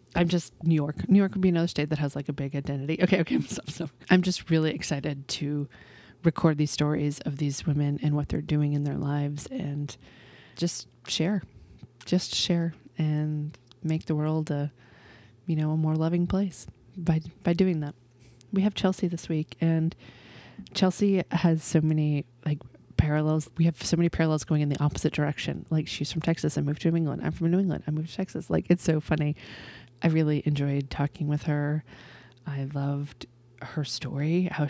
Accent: American